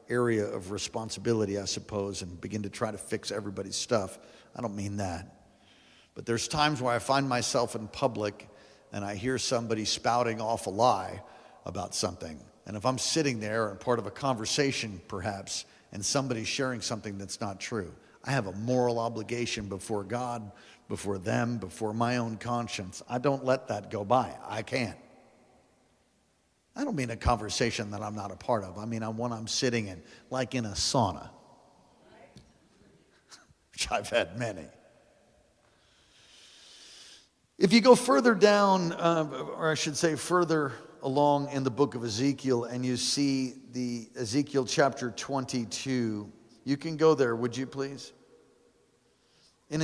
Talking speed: 160 wpm